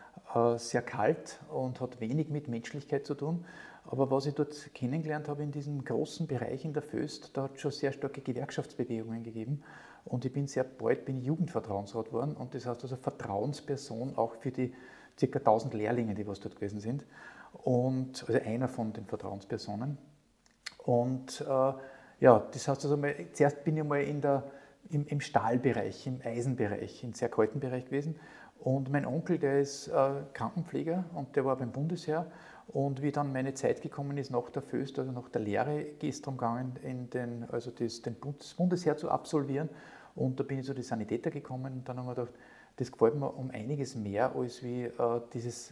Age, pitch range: 50-69, 120-145 Hz